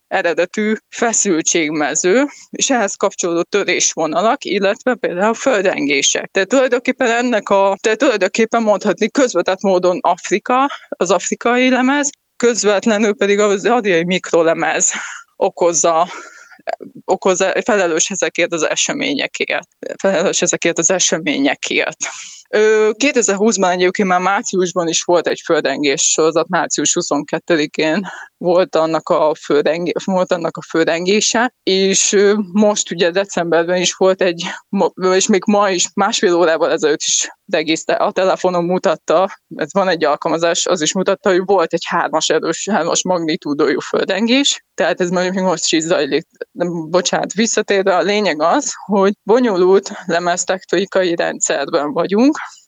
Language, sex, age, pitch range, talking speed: Hungarian, female, 20-39, 175-215 Hz, 110 wpm